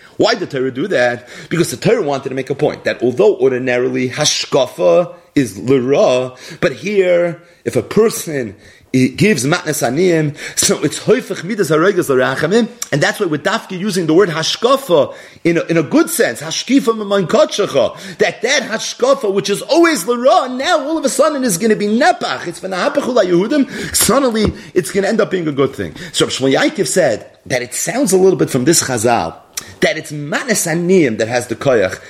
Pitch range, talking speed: 130-210 Hz, 180 wpm